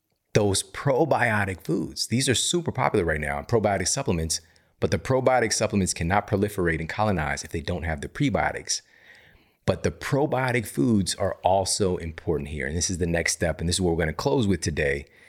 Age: 40-59